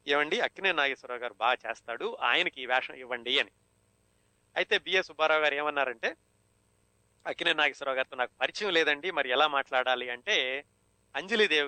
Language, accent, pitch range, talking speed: Telugu, native, 125-150 Hz, 140 wpm